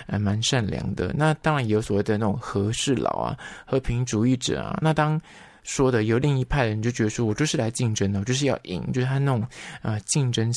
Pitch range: 110-140 Hz